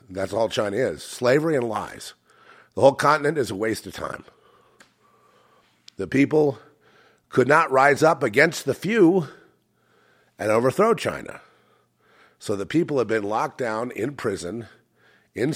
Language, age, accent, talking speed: English, 50-69, American, 145 wpm